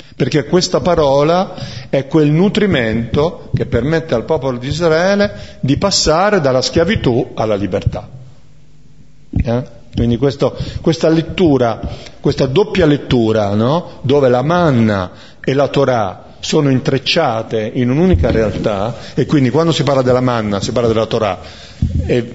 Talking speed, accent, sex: 130 wpm, native, male